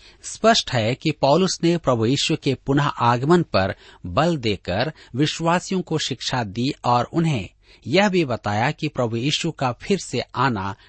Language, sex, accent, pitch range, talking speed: Hindi, male, native, 110-165 Hz, 155 wpm